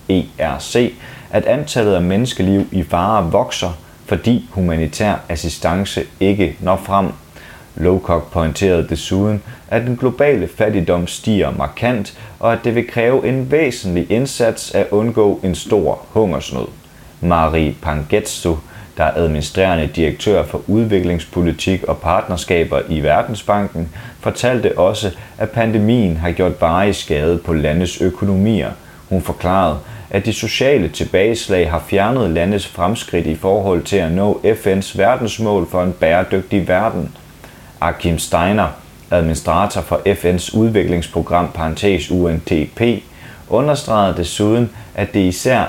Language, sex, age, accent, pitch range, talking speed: Danish, male, 30-49, native, 85-105 Hz, 120 wpm